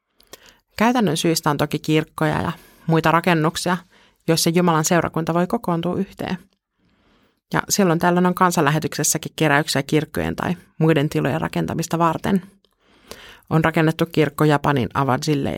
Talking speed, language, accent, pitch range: 120 wpm, Finnish, native, 155-190 Hz